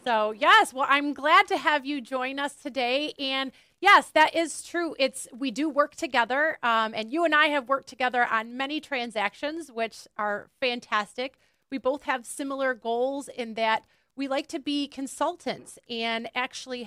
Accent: American